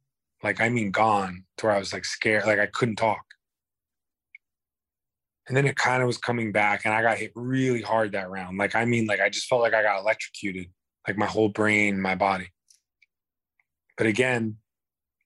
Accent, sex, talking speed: American, male, 195 wpm